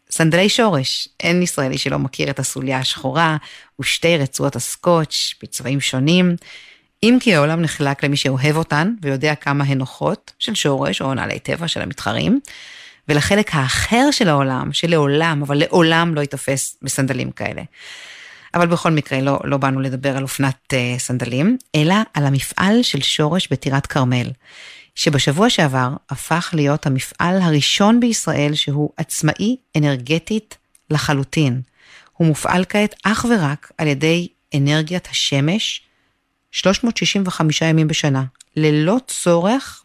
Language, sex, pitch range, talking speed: Hebrew, female, 135-170 Hz, 130 wpm